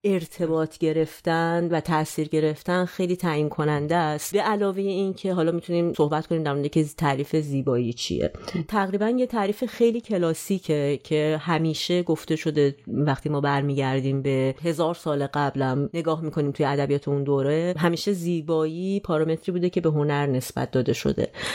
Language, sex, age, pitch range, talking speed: Persian, female, 30-49, 145-180 Hz, 150 wpm